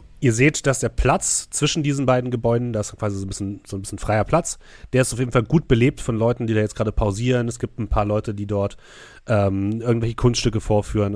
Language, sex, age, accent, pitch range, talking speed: German, male, 30-49, German, 100-120 Hz, 230 wpm